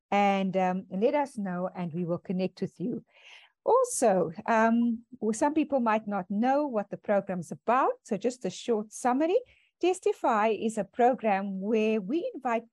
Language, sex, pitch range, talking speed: English, female, 195-265 Hz, 170 wpm